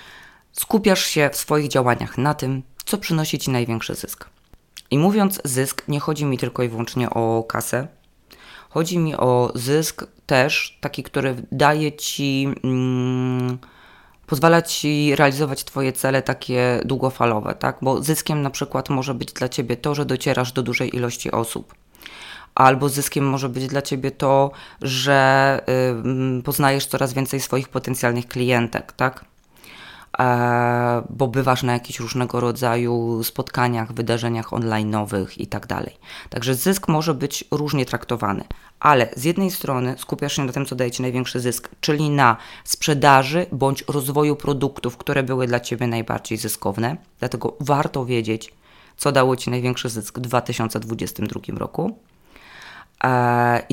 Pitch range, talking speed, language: 120-145 Hz, 140 wpm, Polish